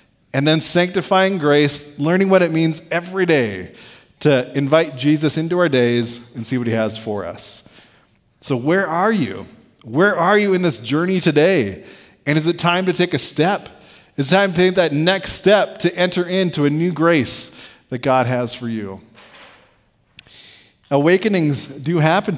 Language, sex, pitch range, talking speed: English, male, 130-180 Hz, 170 wpm